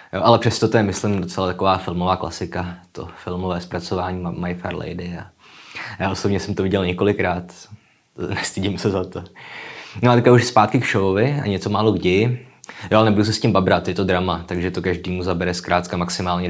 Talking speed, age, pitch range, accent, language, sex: 195 wpm, 20-39, 90-105 Hz, native, Czech, male